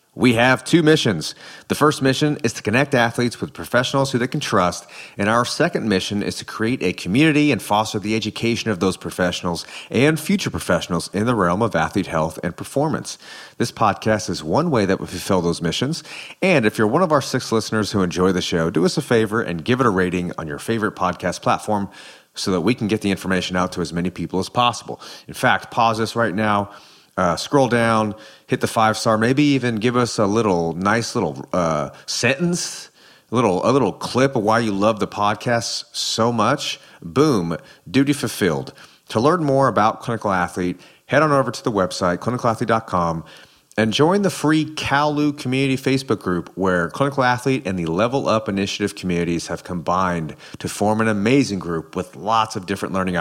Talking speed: 195 wpm